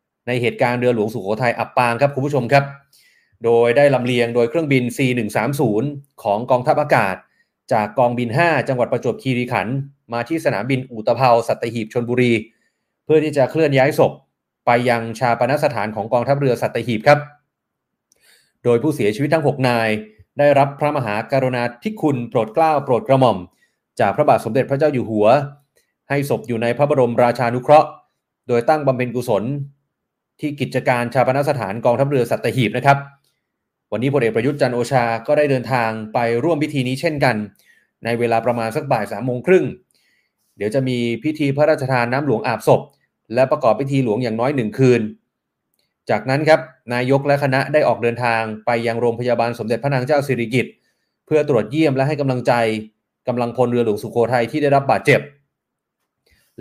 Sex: male